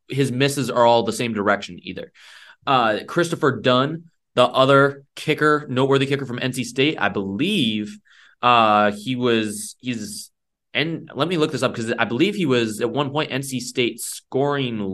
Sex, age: male, 20-39